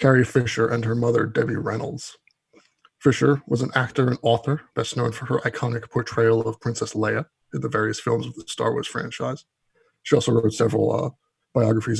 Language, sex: English, male